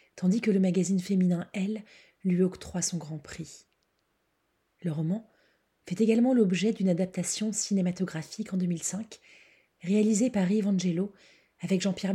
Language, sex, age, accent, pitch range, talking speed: French, female, 30-49, French, 175-205 Hz, 130 wpm